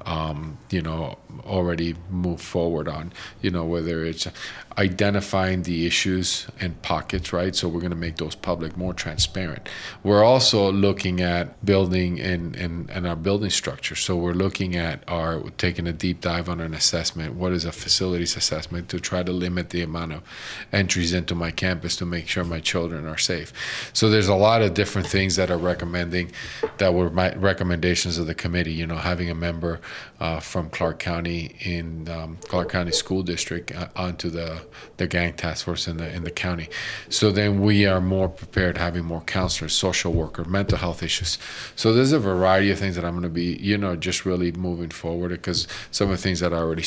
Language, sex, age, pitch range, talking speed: English, male, 40-59, 85-95 Hz, 195 wpm